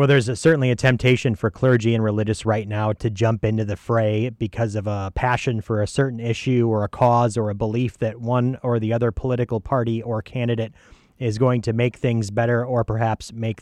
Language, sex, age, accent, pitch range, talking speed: English, male, 30-49, American, 105-125 Hz, 210 wpm